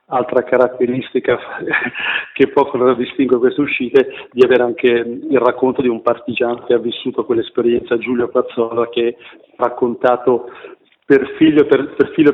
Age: 40-59